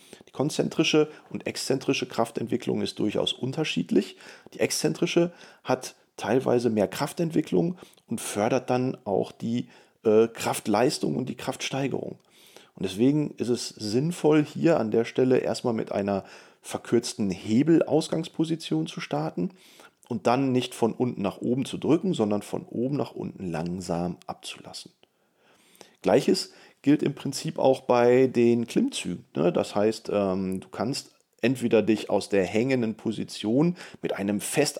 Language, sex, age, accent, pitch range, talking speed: German, male, 40-59, German, 110-145 Hz, 135 wpm